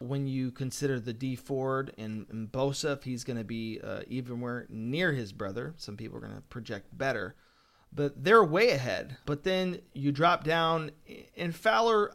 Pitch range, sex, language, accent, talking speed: 125-170 Hz, male, English, American, 170 wpm